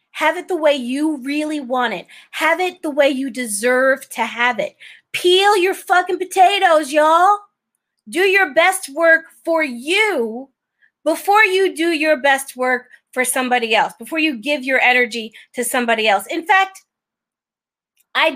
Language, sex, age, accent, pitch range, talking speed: English, female, 30-49, American, 240-320 Hz, 155 wpm